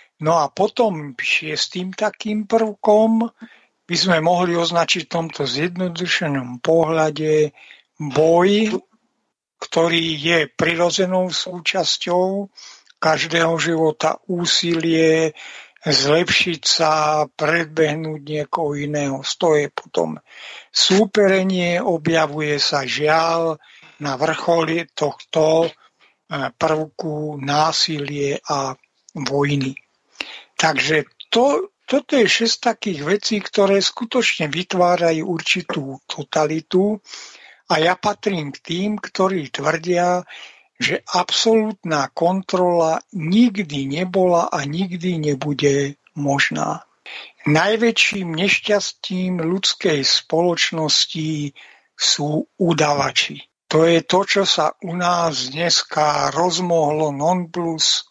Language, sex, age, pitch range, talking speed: Slovak, male, 60-79, 155-185 Hz, 90 wpm